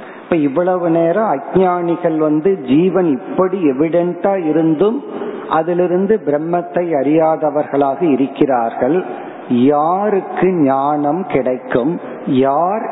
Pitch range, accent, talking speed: 145-185 Hz, native, 75 wpm